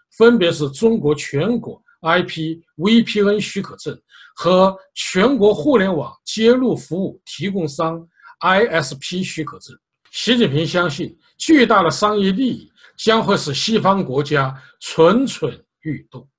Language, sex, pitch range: Chinese, male, 155-220 Hz